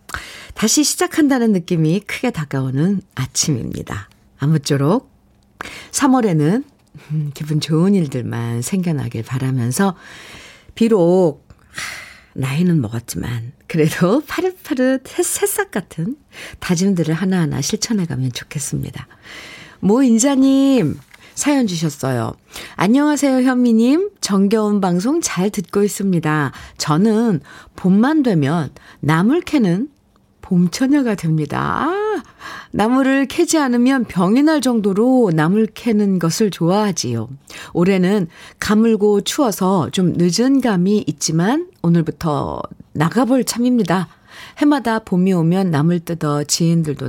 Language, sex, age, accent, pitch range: Korean, female, 50-69, native, 150-235 Hz